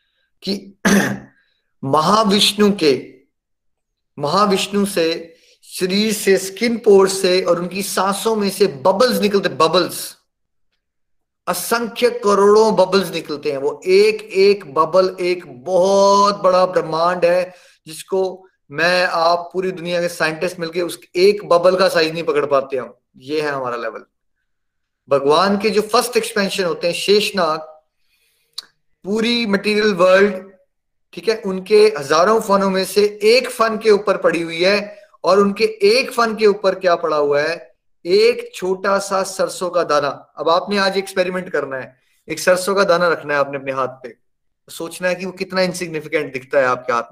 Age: 30-49